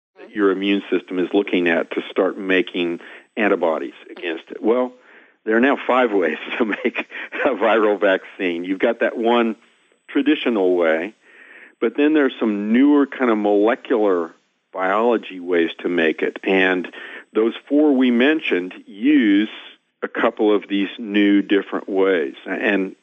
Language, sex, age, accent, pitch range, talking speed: English, male, 50-69, American, 95-130 Hz, 145 wpm